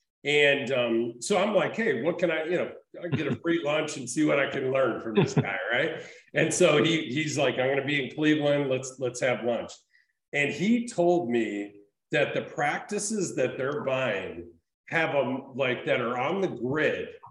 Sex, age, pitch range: male, 50-69, 120-165 Hz